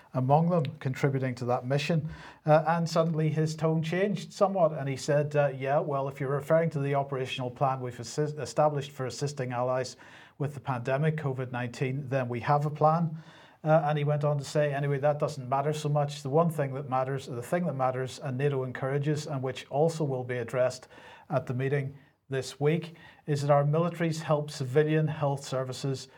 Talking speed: 195 wpm